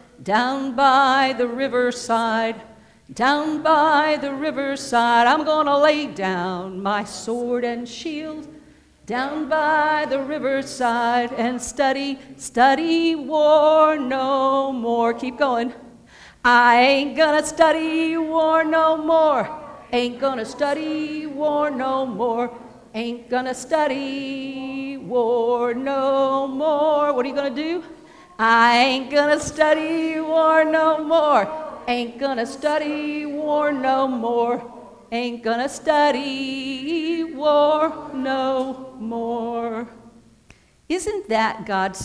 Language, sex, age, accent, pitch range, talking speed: English, female, 50-69, American, 235-300 Hz, 115 wpm